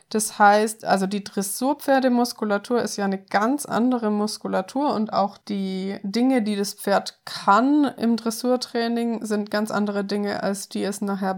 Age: 20-39